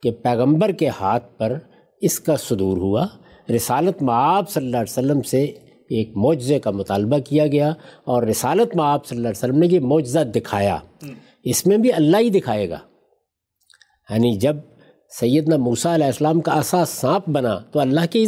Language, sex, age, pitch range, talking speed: Urdu, male, 60-79, 125-175 Hz, 185 wpm